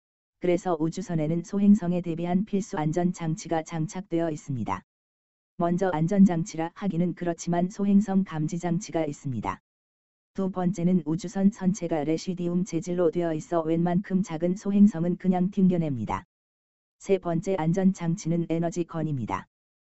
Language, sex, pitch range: Korean, female, 160-180 Hz